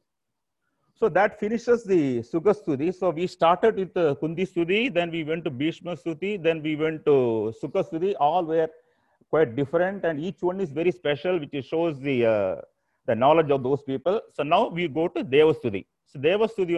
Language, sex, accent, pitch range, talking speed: Tamil, male, native, 150-180 Hz, 170 wpm